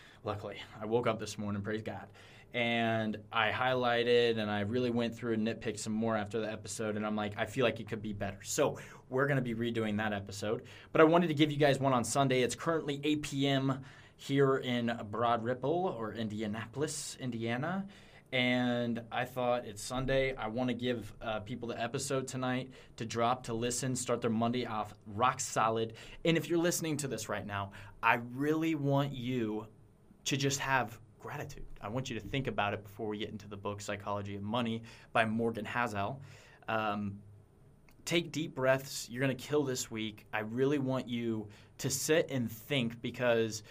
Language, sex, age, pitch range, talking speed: English, male, 20-39, 110-135 Hz, 190 wpm